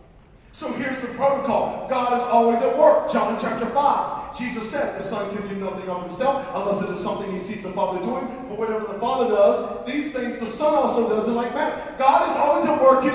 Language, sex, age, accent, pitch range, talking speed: English, male, 40-59, American, 250-315 Hz, 230 wpm